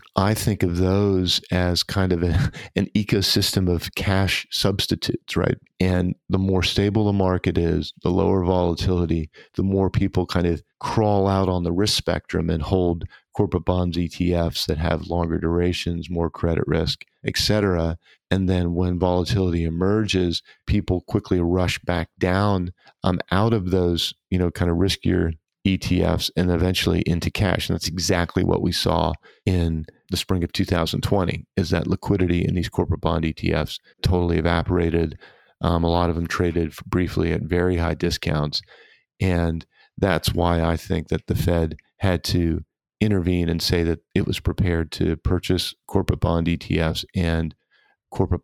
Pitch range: 85-95 Hz